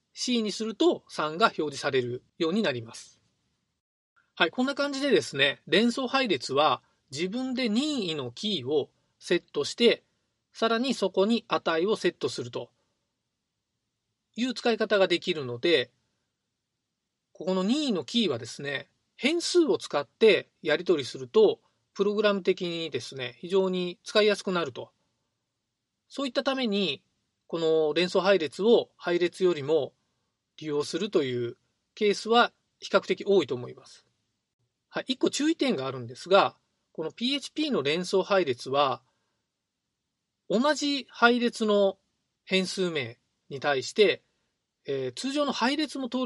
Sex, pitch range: male, 160-255 Hz